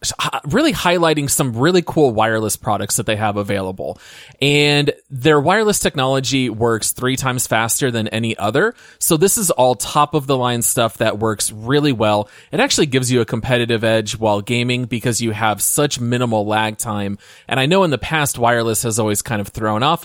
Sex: male